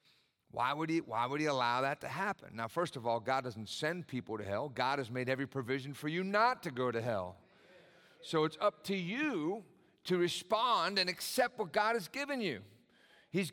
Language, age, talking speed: English, 50-69, 200 wpm